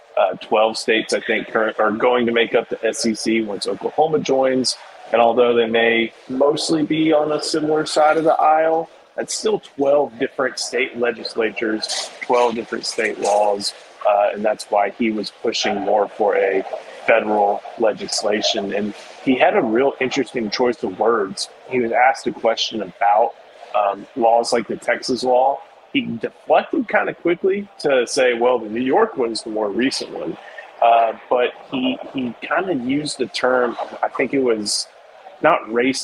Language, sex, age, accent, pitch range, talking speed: English, male, 30-49, American, 115-145 Hz, 175 wpm